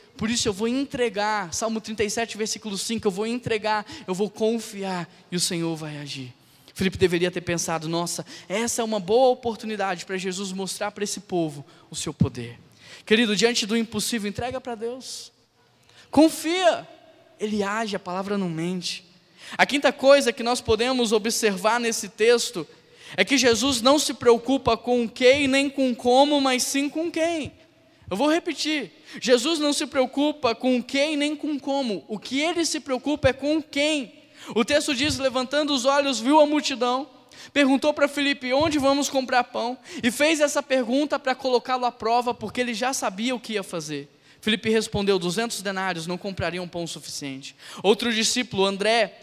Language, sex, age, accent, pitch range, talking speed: Portuguese, male, 10-29, Brazilian, 195-270 Hz, 170 wpm